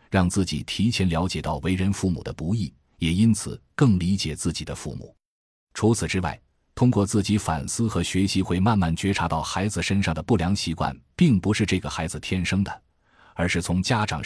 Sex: male